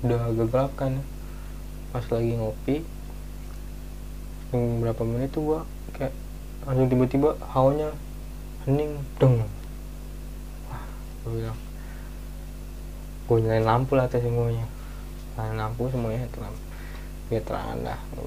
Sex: male